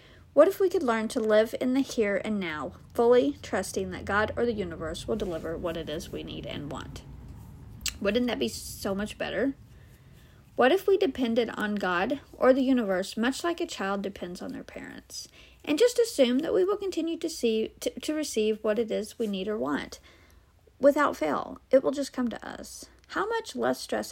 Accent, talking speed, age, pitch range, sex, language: American, 205 wpm, 50-69, 205-265 Hz, female, English